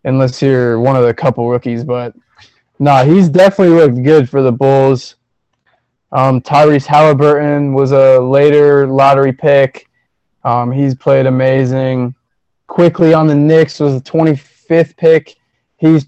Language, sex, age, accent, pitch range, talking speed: English, male, 20-39, American, 130-165 Hz, 140 wpm